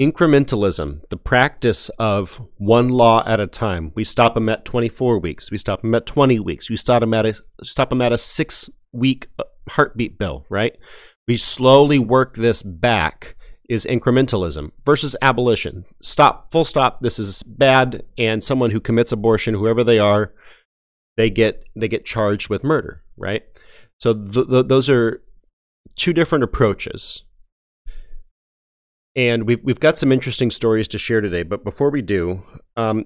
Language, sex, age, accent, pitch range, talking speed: English, male, 30-49, American, 95-125 Hz, 155 wpm